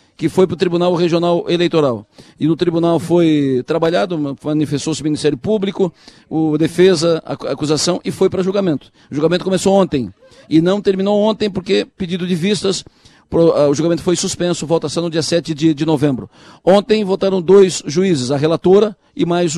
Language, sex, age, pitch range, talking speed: Portuguese, male, 50-69, 150-185 Hz, 165 wpm